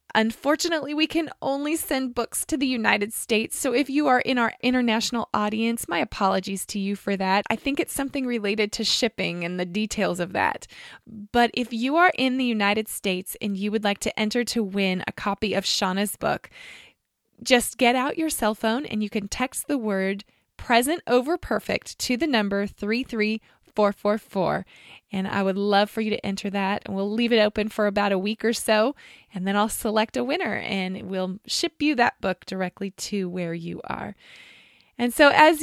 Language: English